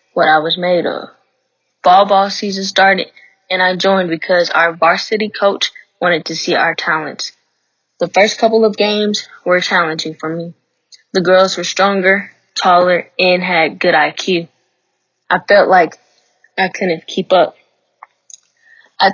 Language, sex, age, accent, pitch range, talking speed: English, female, 10-29, American, 175-195 Hz, 145 wpm